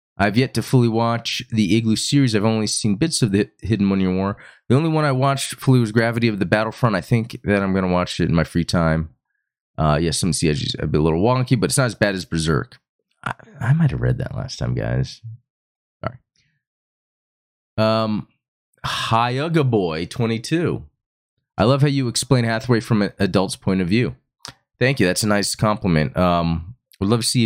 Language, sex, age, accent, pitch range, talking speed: English, male, 30-49, American, 100-130 Hz, 205 wpm